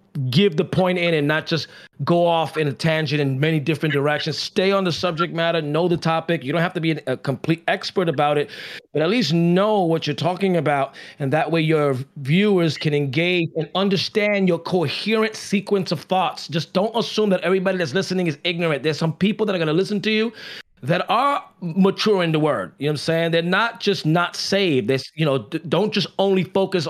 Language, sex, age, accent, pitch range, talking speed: English, male, 30-49, American, 160-205 Hz, 215 wpm